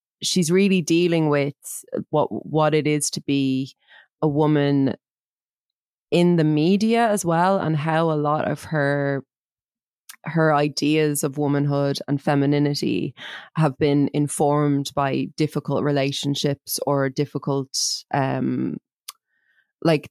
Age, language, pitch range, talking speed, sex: 20-39, English, 135-150 Hz, 115 wpm, female